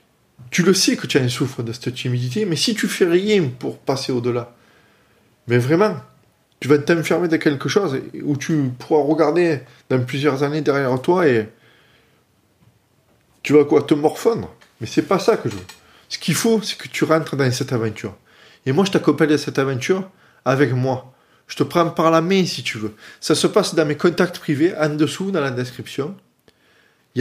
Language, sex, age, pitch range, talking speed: French, male, 20-39, 130-175 Hz, 205 wpm